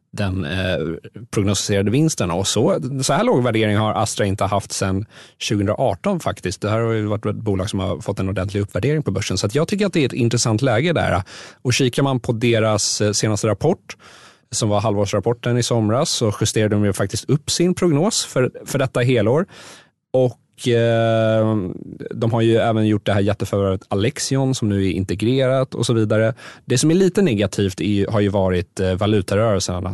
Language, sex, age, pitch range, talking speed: Swedish, male, 30-49, 95-115 Hz, 190 wpm